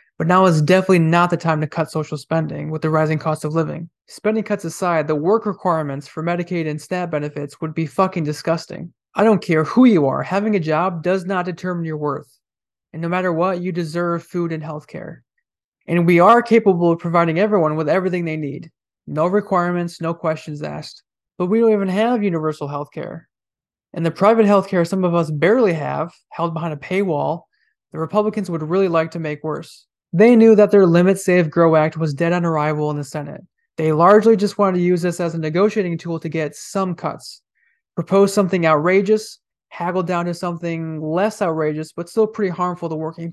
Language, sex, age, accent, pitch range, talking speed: English, male, 20-39, American, 160-190 Hz, 205 wpm